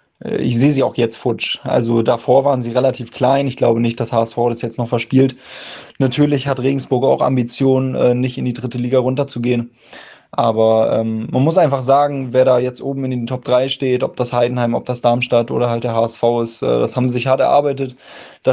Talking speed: 210 wpm